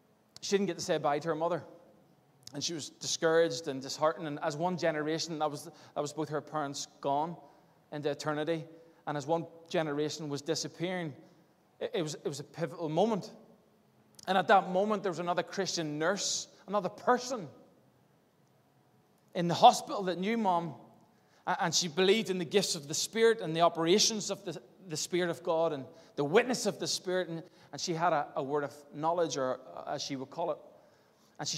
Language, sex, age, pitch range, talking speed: English, male, 20-39, 150-185 Hz, 190 wpm